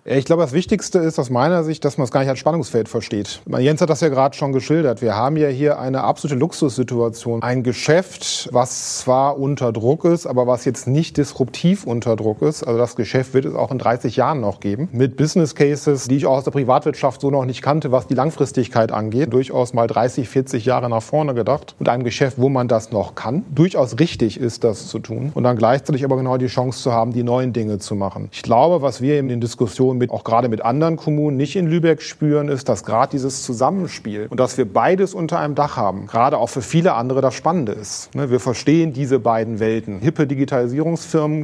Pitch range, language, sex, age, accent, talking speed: 120-150 Hz, German, male, 40-59, German, 220 wpm